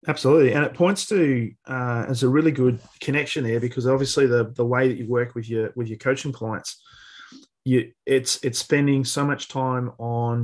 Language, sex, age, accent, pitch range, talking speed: English, male, 30-49, Australian, 115-130 Hz, 195 wpm